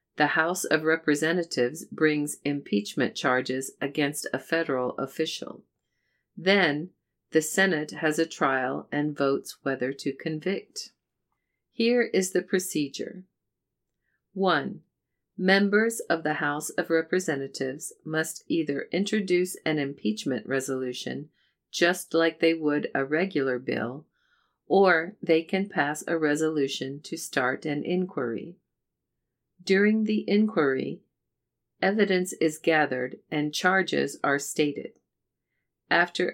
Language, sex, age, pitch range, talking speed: English, female, 50-69, 140-180 Hz, 110 wpm